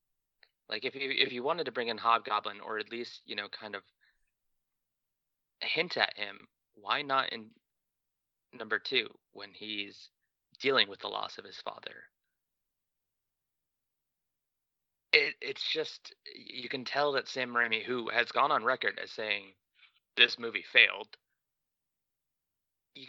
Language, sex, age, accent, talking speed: English, male, 30-49, American, 140 wpm